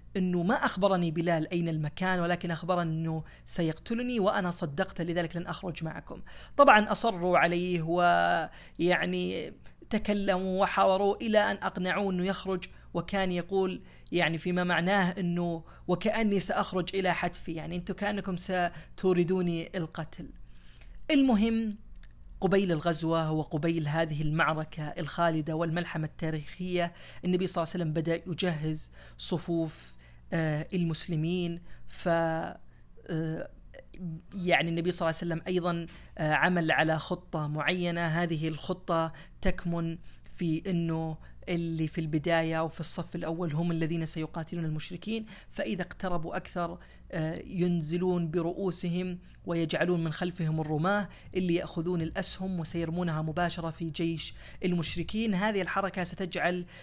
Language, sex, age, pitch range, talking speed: Arabic, female, 30-49, 165-185 Hz, 110 wpm